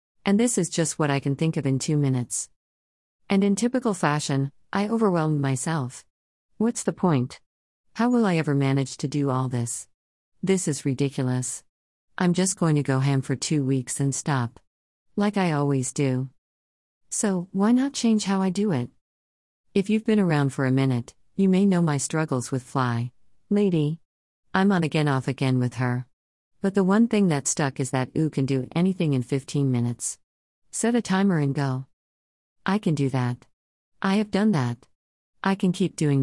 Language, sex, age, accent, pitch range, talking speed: English, female, 40-59, American, 125-170 Hz, 185 wpm